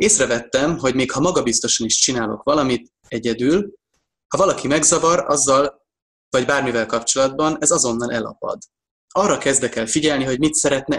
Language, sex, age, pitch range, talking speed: Hungarian, male, 20-39, 120-140 Hz, 140 wpm